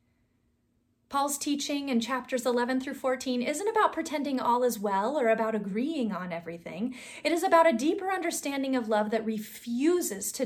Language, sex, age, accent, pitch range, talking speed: English, female, 30-49, American, 215-280 Hz, 165 wpm